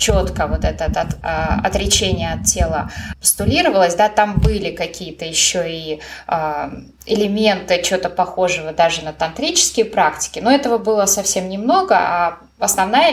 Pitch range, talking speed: 185-225 Hz, 125 wpm